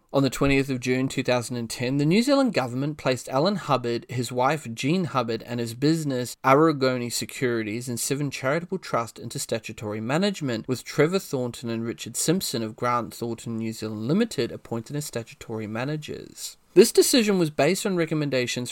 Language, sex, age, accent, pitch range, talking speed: English, male, 20-39, Australian, 115-145 Hz, 165 wpm